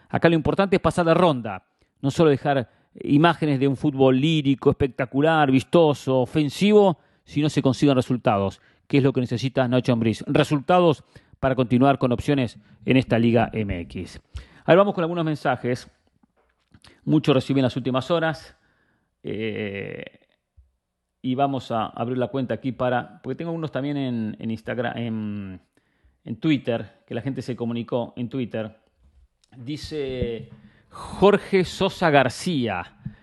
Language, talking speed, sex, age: English, 145 wpm, male, 40-59